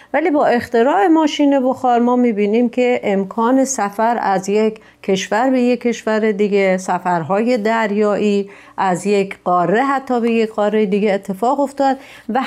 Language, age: Persian, 40-59